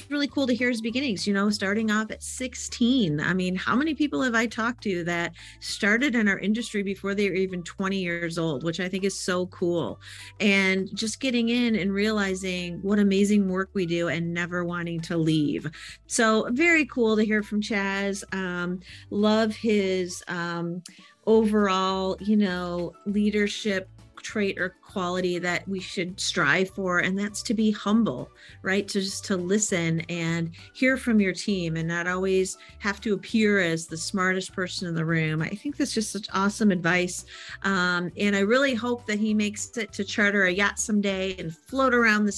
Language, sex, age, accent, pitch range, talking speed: English, female, 40-59, American, 180-220 Hz, 185 wpm